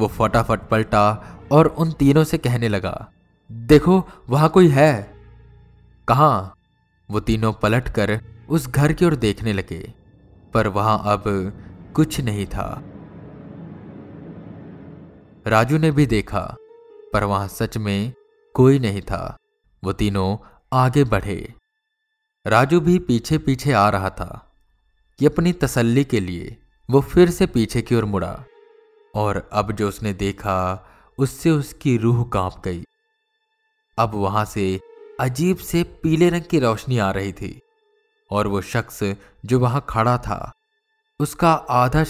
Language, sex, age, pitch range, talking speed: Hindi, male, 20-39, 100-160 Hz, 135 wpm